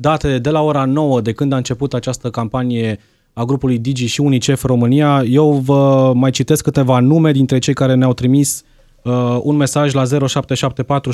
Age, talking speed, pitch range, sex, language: 20-39, 180 wpm, 130-150 Hz, male, Romanian